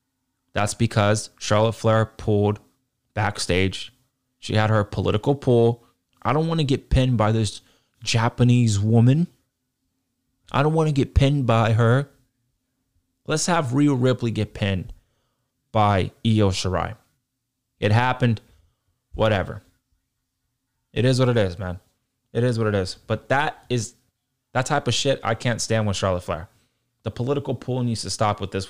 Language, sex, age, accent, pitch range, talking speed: English, male, 20-39, American, 110-130 Hz, 155 wpm